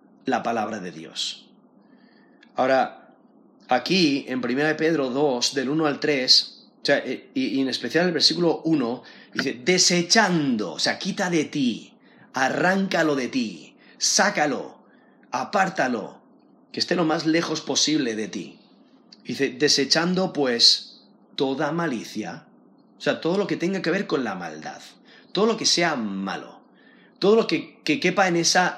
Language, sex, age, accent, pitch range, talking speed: Spanish, male, 30-49, Spanish, 140-190 Hz, 145 wpm